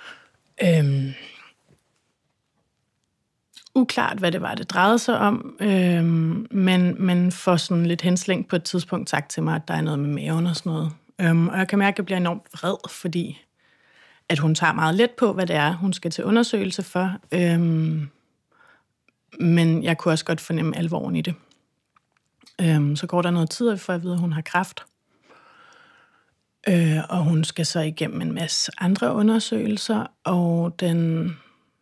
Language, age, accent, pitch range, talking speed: Danish, 30-49, native, 165-200 Hz, 170 wpm